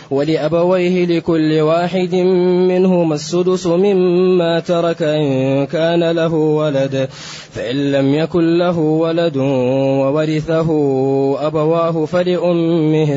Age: 20-39